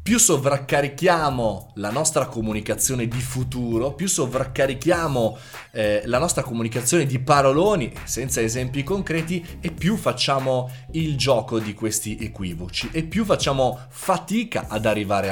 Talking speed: 125 wpm